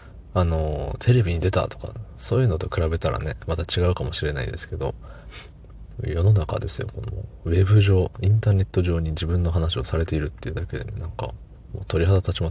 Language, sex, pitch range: Japanese, male, 85-100 Hz